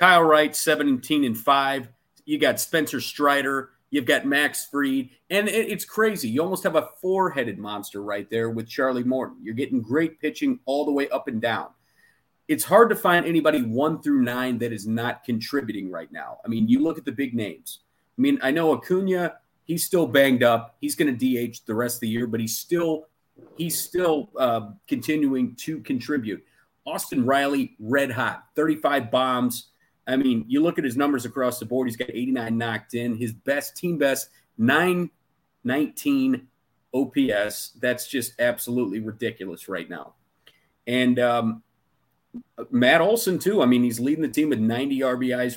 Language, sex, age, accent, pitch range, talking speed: English, male, 30-49, American, 120-175 Hz, 180 wpm